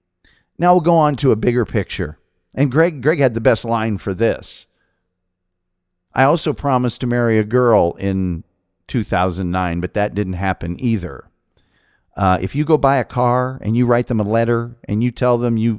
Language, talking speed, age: English, 185 wpm, 50-69